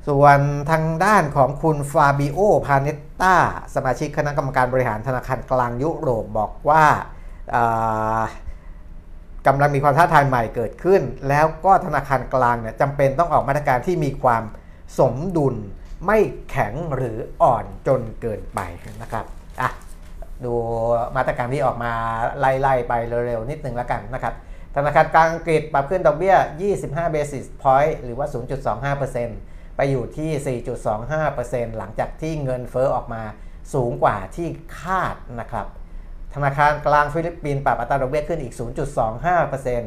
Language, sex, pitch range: Thai, male, 115-145 Hz